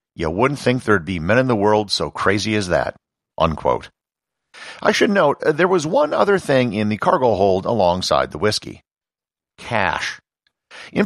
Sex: male